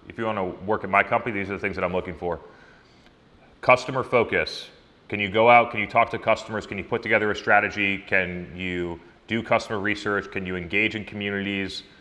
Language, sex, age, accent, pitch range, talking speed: English, male, 30-49, American, 100-115 Hz, 210 wpm